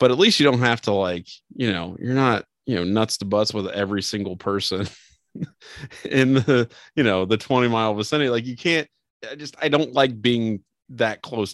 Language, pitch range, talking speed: English, 95-125 Hz, 210 wpm